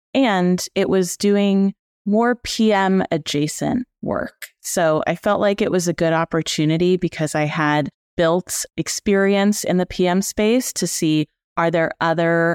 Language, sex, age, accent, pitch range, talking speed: English, female, 30-49, American, 150-190 Hz, 150 wpm